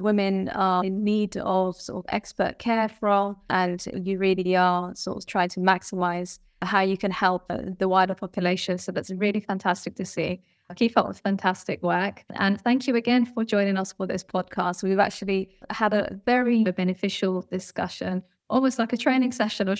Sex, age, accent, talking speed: female, 20-39, British, 180 wpm